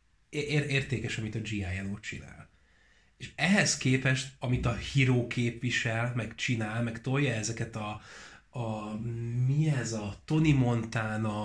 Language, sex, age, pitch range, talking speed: Hungarian, male, 30-49, 105-125 Hz, 125 wpm